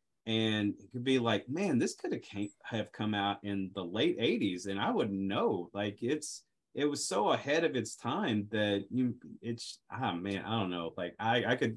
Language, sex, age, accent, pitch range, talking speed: English, male, 30-49, American, 100-120 Hz, 215 wpm